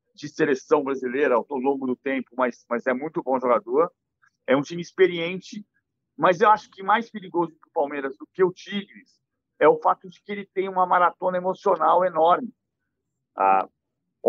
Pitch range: 165-215 Hz